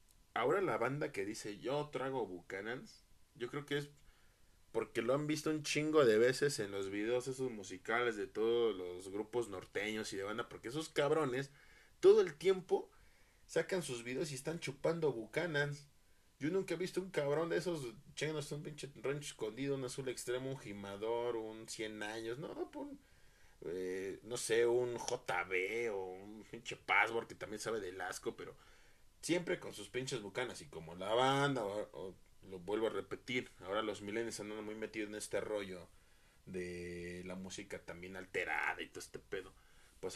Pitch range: 100-145 Hz